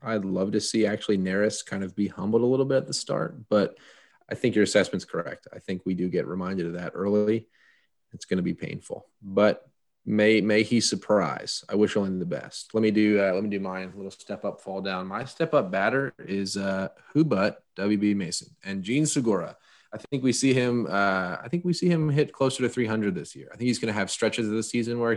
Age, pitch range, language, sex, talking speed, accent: 20-39, 95-115 Hz, English, male, 240 wpm, American